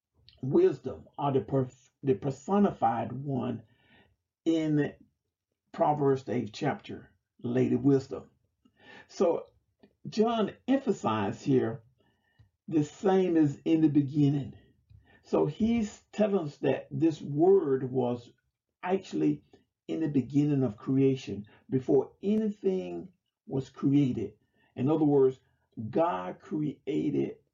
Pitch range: 120-160 Hz